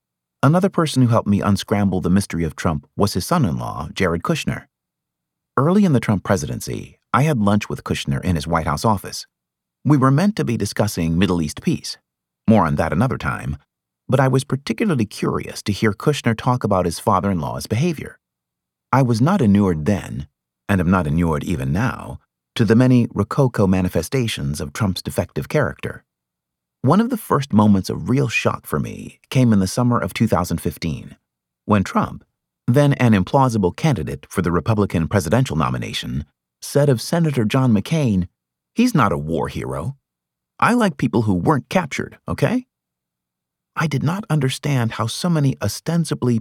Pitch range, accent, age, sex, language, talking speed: 80-135 Hz, American, 30-49, male, English, 165 wpm